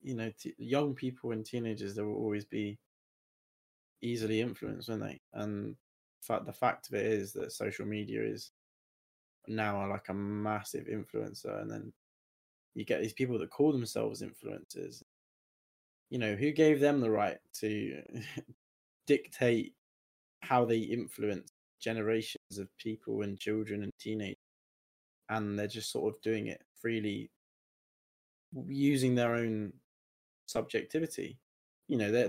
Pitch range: 105-125 Hz